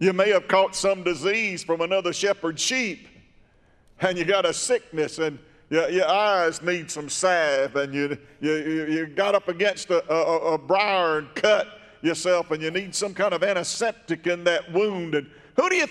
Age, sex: 50-69, male